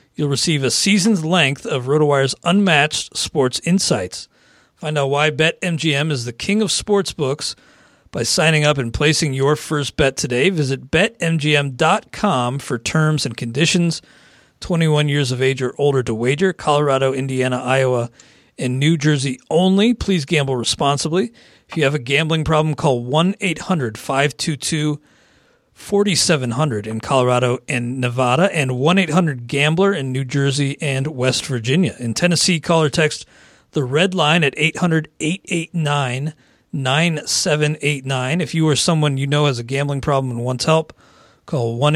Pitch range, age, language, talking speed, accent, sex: 130-160 Hz, 40-59, English, 140 wpm, American, male